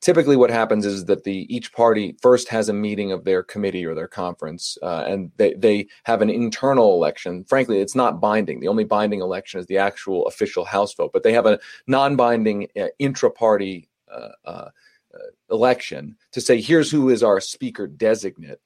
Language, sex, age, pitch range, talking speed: English, male, 40-59, 100-130 Hz, 185 wpm